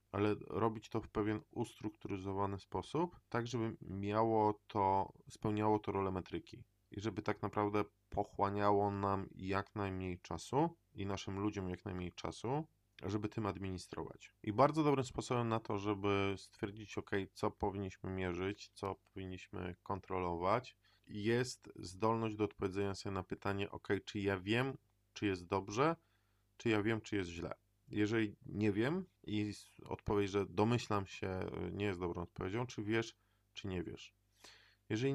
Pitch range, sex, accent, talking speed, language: 95-110 Hz, male, native, 150 wpm, Polish